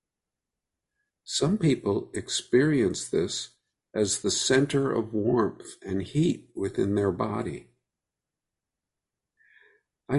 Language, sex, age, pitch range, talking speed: English, male, 50-69, 95-130 Hz, 90 wpm